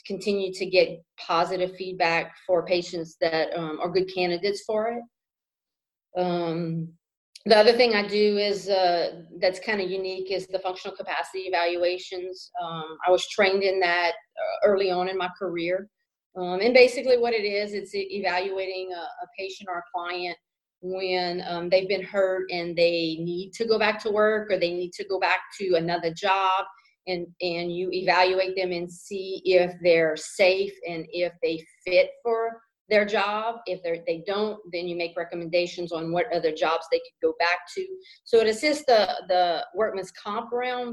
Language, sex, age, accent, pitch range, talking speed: English, female, 40-59, American, 175-205 Hz, 175 wpm